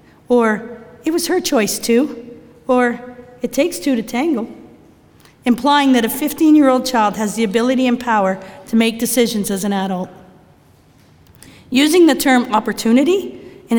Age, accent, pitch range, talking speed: 40-59, American, 215-255 Hz, 145 wpm